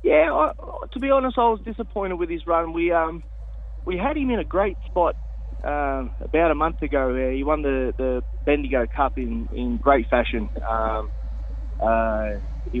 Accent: Australian